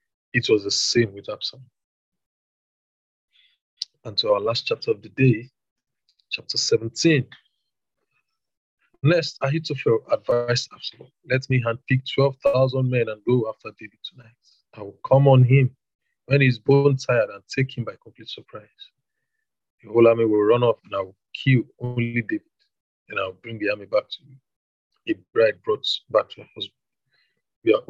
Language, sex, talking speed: English, male, 160 wpm